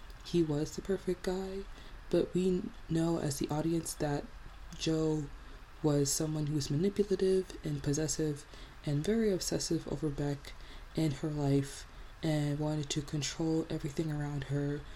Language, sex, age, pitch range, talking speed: English, female, 20-39, 145-170 Hz, 140 wpm